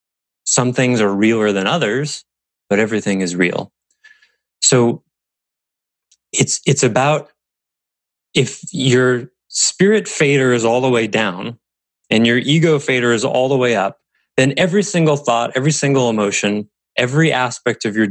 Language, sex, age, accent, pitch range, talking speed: English, male, 20-39, American, 105-155 Hz, 145 wpm